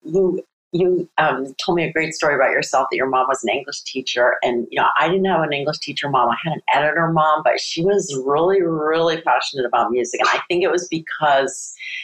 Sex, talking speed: female, 230 wpm